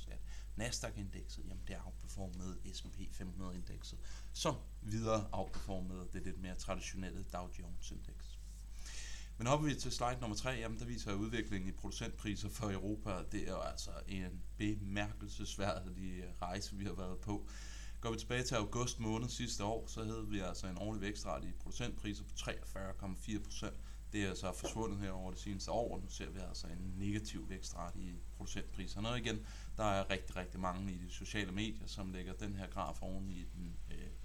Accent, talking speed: native, 180 wpm